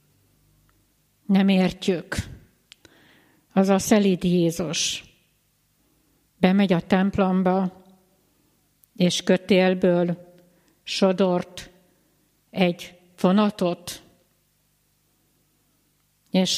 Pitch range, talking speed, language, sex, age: 165-195 Hz, 55 wpm, Hungarian, female, 60-79